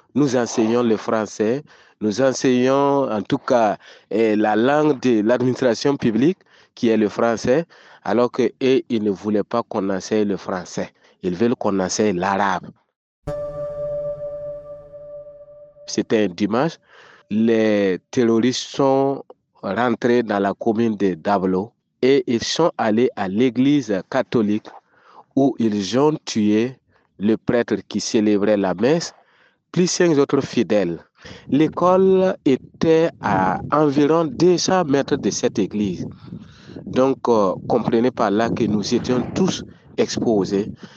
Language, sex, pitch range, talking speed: English, male, 110-145 Hz, 125 wpm